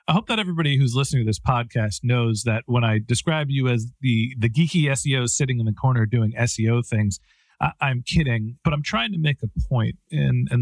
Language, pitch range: English, 115-140 Hz